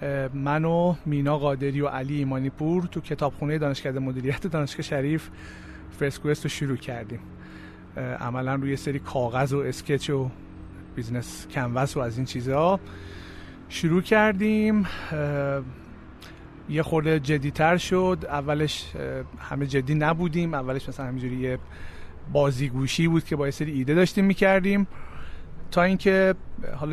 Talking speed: 125 wpm